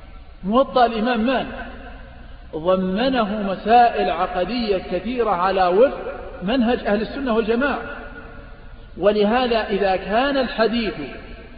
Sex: male